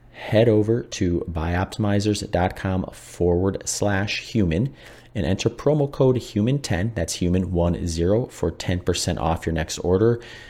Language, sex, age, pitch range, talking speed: English, male, 30-49, 85-110 Hz, 135 wpm